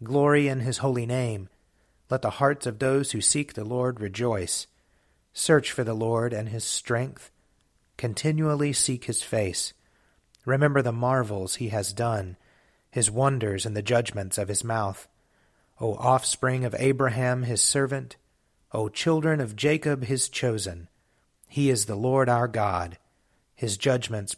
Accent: American